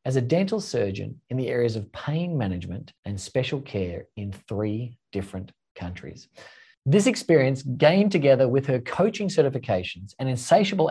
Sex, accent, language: male, Australian, English